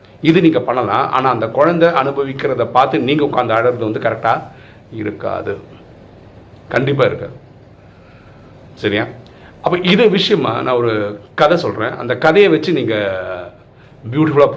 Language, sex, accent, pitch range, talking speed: Tamil, male, native, 115-160 Hz, 120 wpm